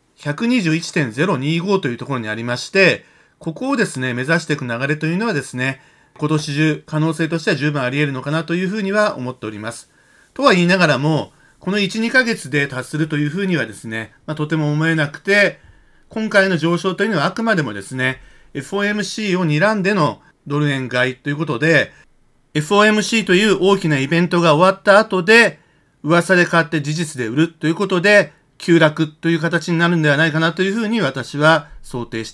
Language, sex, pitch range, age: Japanese, male, 135-185 Hz, 40-59